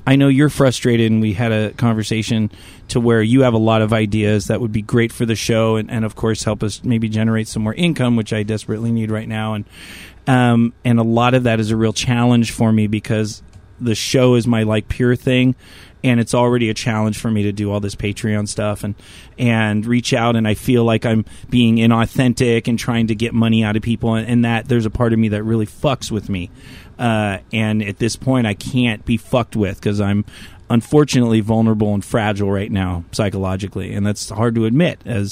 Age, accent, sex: 30-49, American, male